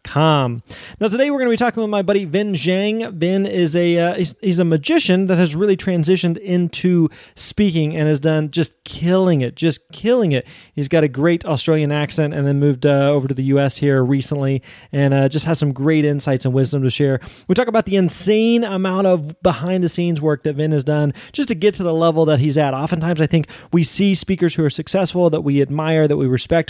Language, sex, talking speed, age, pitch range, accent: English, male, 225 wpm, 30-49, 145-175 Hz, American